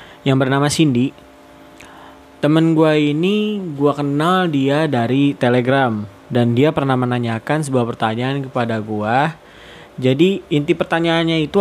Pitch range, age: 120-160 Hz, 20-39